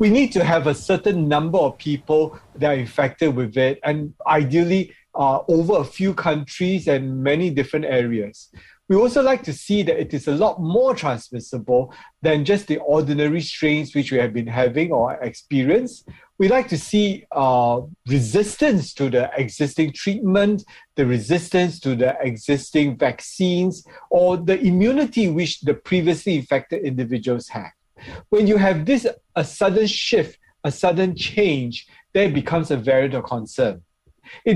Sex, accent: male, Malaysian